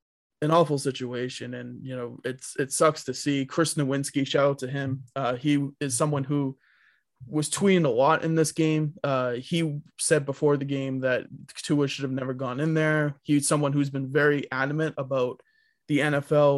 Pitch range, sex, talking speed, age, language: 130-150 Hz, male, 190 wpm, 20-39, English